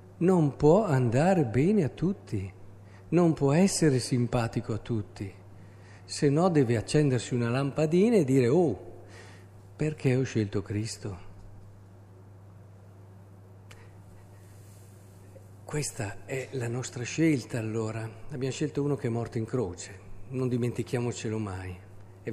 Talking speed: 115 wpm